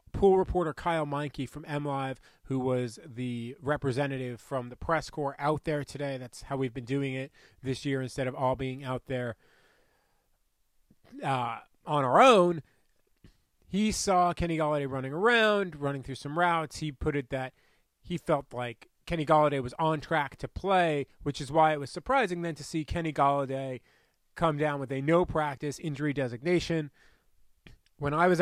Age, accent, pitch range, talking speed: 30-49, American, 135-165 Hz, 170 wpm